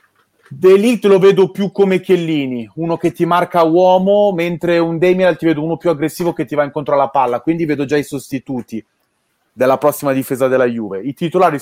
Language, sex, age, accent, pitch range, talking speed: Italian, male, 30-49, native, 135-175 Hz, 195 wpm